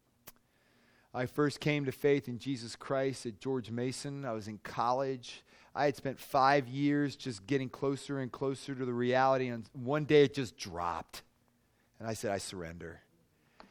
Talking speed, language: 170 wpm, English